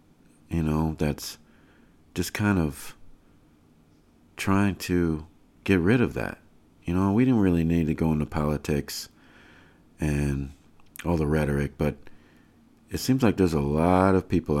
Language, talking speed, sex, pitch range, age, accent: English, 145 wpm, male, 70-85 Hz, 50-69, American